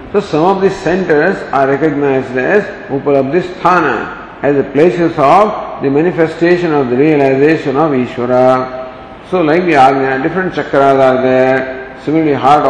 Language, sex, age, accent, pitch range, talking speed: English, male, 50-69, Indian, 135-185 Hz, 140 wpm